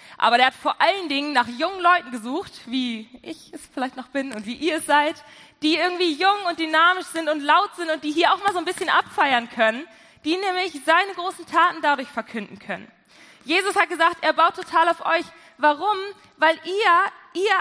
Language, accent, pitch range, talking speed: German, German, 280-365 Hz, 205 wpm